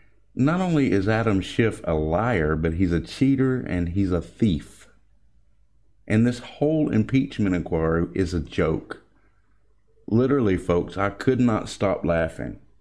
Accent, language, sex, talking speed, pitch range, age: American, English, male, 140 wpm, 95-140 Hz, 50-69